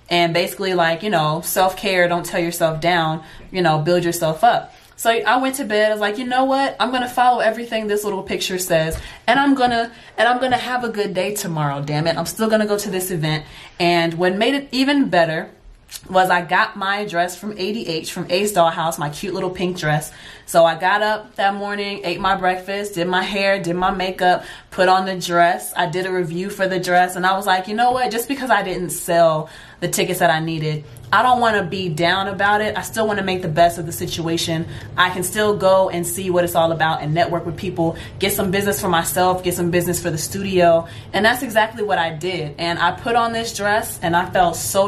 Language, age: English, 20-39